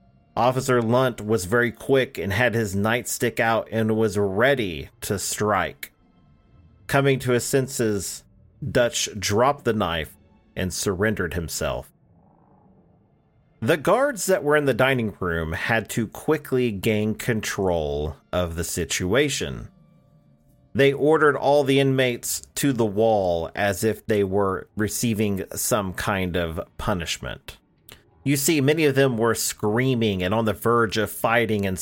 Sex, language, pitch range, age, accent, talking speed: male, English, 105-135 Hz, 40-59, American, 140 wpm